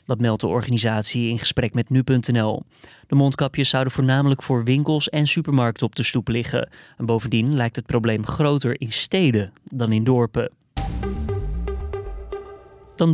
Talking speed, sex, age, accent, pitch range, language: 145 wpm, male, 20-39, Dutch, 115-135 Hz, Dutch